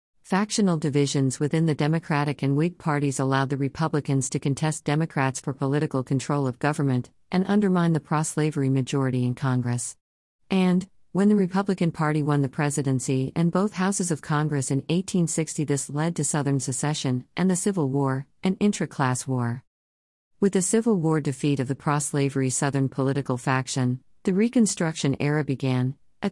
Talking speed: 155 wpm